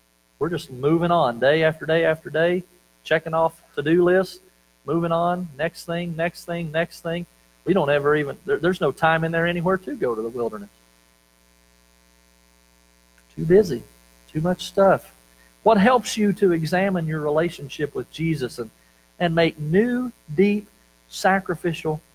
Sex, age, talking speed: male, 40-59, 150 wpm